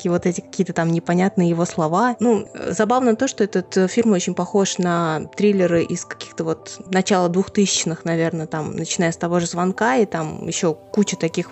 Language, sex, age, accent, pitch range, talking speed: Russian, female, 20-39, native, 165-205 Hz, 175 wpm